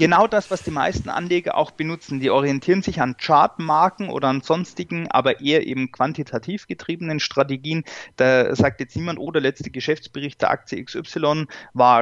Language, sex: German, male